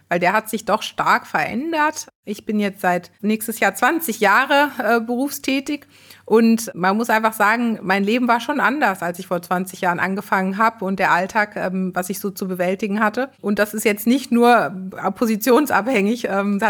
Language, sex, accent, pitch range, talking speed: German, female, German, 195-230 Hz, 185 wpm